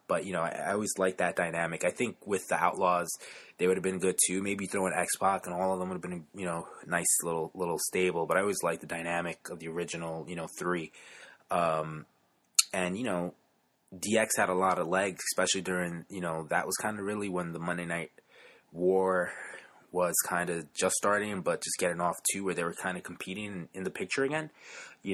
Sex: male